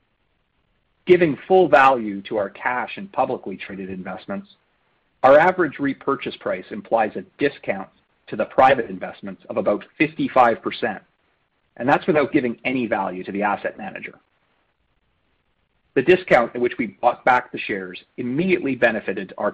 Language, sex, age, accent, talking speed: English, male, 40-59, American, 140 wpm